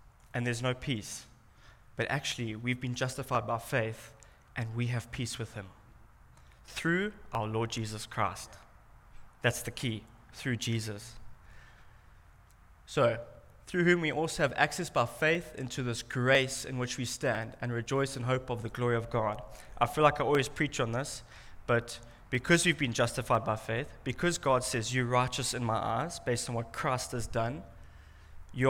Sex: male